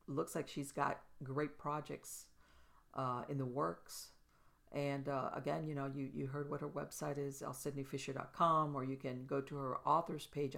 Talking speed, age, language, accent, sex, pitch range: 175 wpm, 50-69, English, American, female, 135-155 Hz